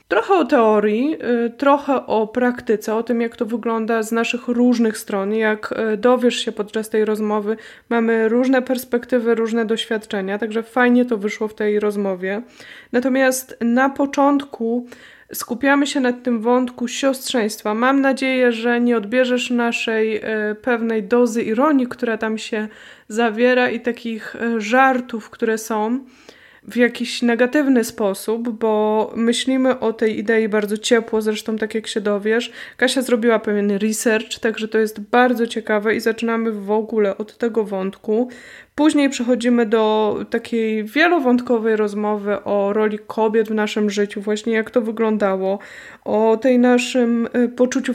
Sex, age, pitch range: female, 20-39, 220-250 Hz